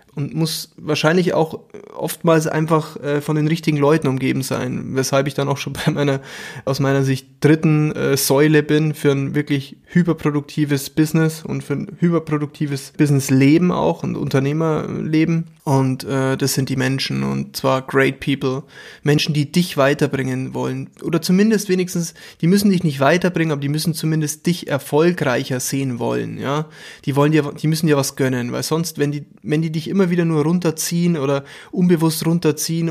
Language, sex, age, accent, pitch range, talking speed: German, male, 20-39, German, 145-175 Hz, 170 wpm